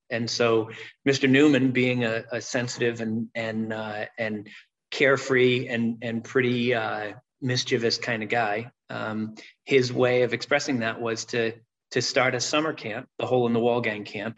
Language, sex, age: English, male, 30-49